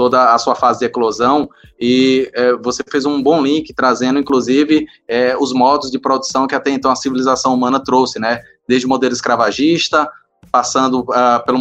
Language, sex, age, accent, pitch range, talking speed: Portuguese, male, 20-39, Brazilian, 125-160 Hz, 180 wpm